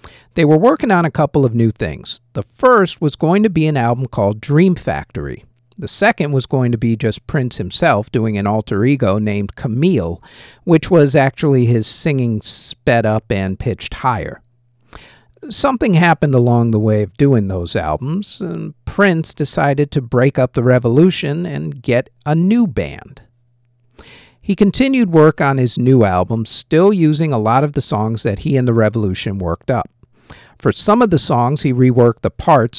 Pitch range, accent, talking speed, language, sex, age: 110-150 Hz, American, 180 wpm, English, male, 50-69